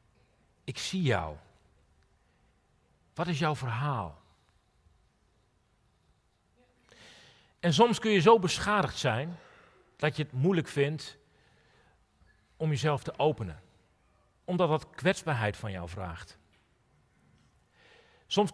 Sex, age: male, 40-59